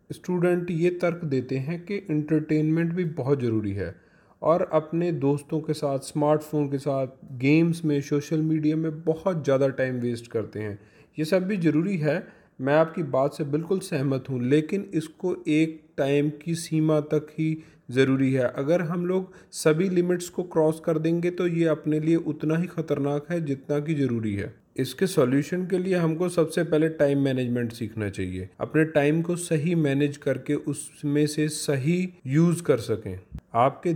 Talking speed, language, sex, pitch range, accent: 170 wpm, Hindi, male, 130-160 Hz, native